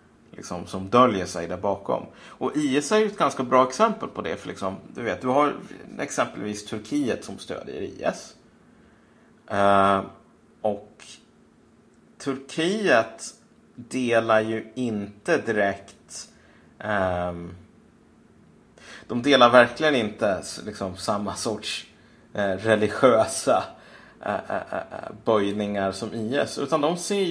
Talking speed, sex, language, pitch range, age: 100 wpm, male, Swedish, 100-130 Hz, 30-49